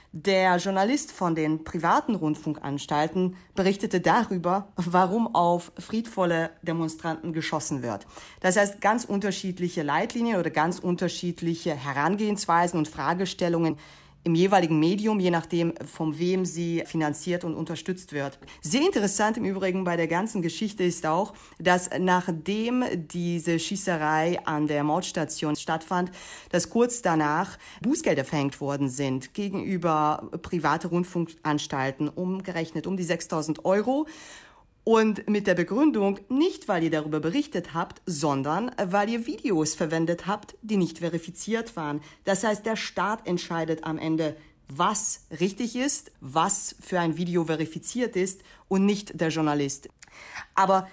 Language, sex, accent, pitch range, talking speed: German, female, German, 160-200 Hz, 130 wpm